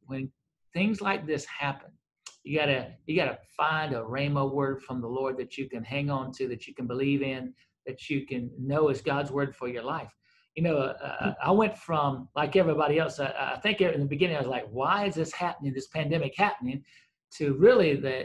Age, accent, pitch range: 50-69, American, 130-160 Hz